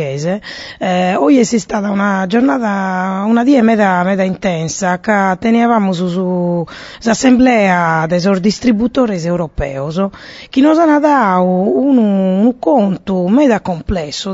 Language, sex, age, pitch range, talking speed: Italian, female, 30-49, 165-220 Hz, 100 wpm